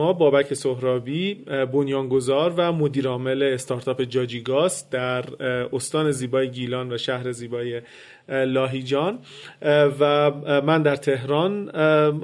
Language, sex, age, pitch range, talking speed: Persian, male, 30-49, 135-160 Hz, 100 wpm